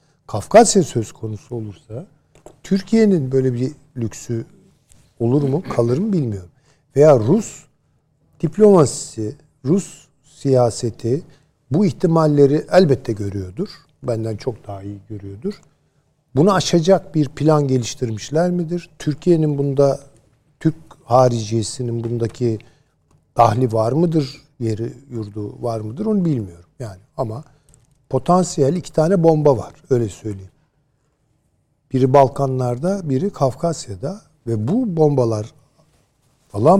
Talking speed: 105 wpm